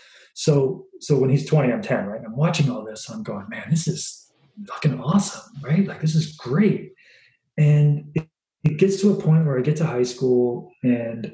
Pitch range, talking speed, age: 125-170 Hz, 210 wpm, 20-39